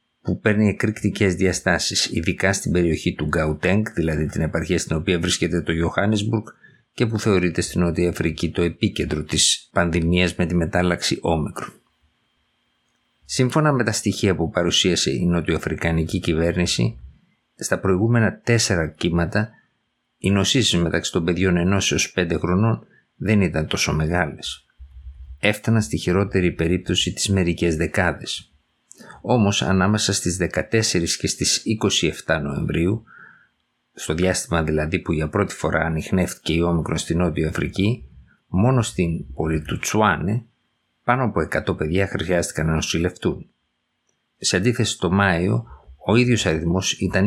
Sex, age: male, 50-69